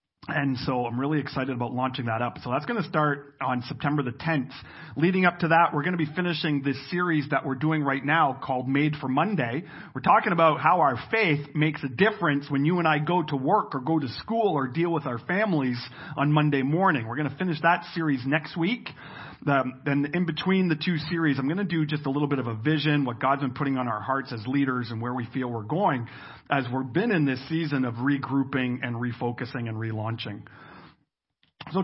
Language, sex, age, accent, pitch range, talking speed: English, male, 40-59, American, 135-175 Hz, 225 wpm